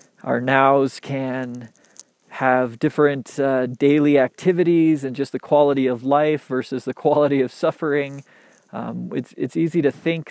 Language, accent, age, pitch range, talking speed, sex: English, American, 30-49, 125-150 Hz, 145 wpm, male